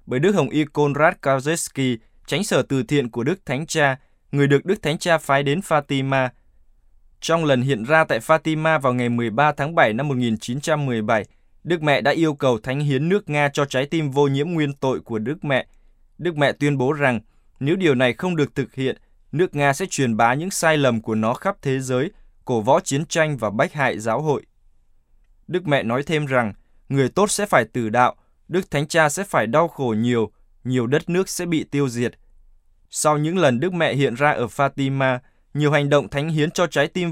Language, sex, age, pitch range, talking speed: Vietnamese, male, 20-39, 125-155 Hz, 210 wpm